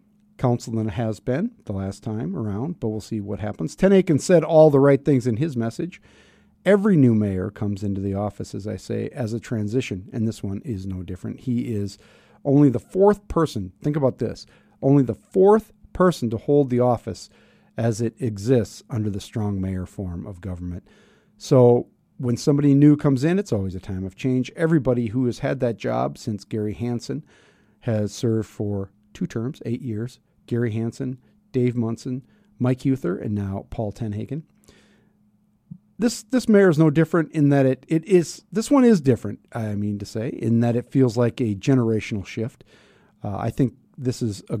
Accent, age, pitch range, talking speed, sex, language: American, 50-69, 105-140 Hz, 185 wpm, male, English